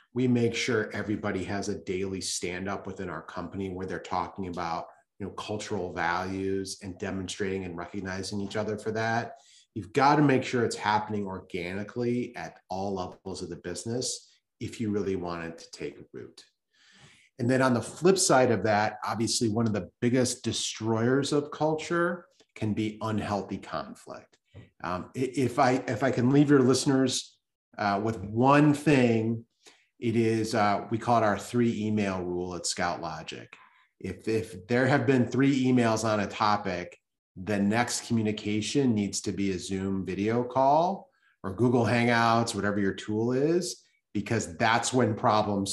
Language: English